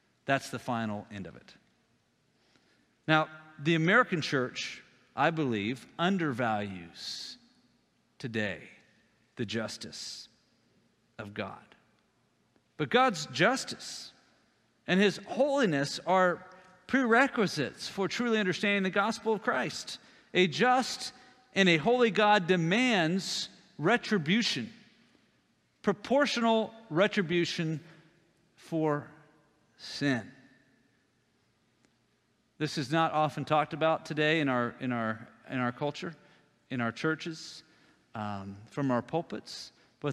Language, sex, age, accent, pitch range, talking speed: English, male, 50-69, American, 140-200 Hz, 100 wpm